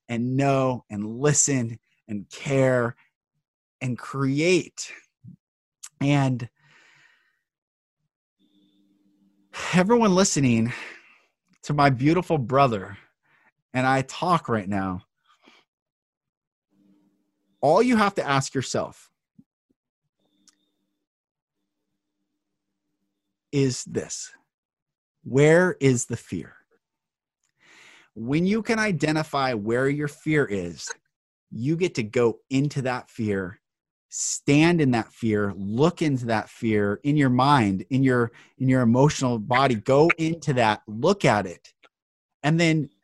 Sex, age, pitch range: male, 30-49, 115-155 Hz